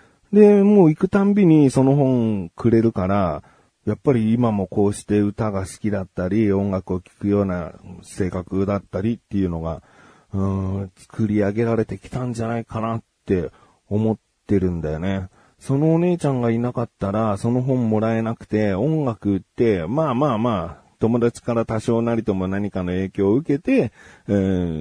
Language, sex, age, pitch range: Japanese, male, 40-59, 90-115 Hz